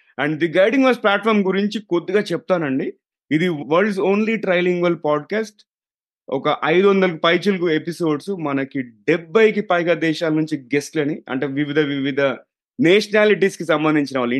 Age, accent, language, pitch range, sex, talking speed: 30-49, native, Telugu, 135-180 Hz, male, 125 wpm